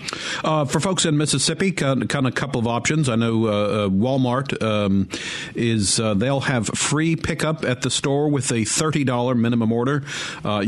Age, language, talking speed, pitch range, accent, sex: 50-69, English, 175 wpm, 105-130 Hz, American, male